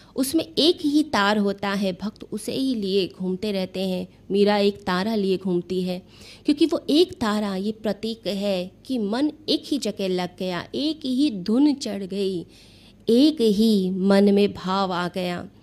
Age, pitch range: 20-39, 185-220 Hz